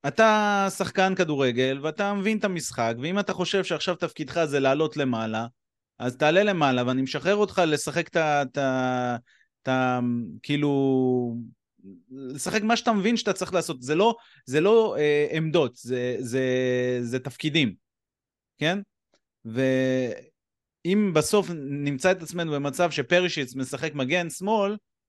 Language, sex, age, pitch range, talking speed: Hebrew, male, 30-49, 125-185 Hz, 125 wpm